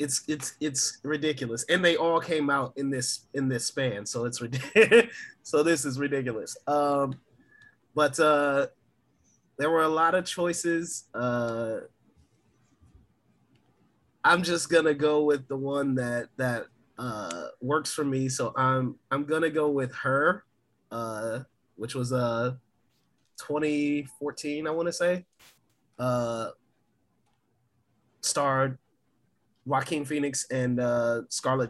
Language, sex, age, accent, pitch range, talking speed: English, male, 20-39, American, 120-150 Hz, 125 wpm